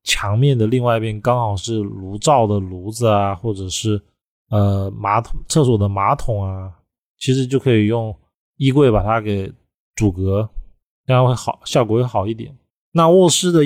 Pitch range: 105-135 Hz